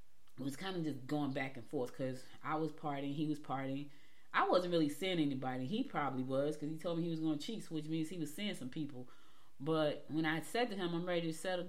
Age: 30-49